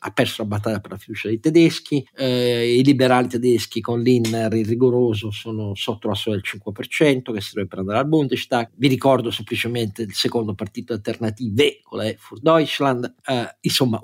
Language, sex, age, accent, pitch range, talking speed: Italian, male, 50-69, native, 105-135 Hz, 170 wpm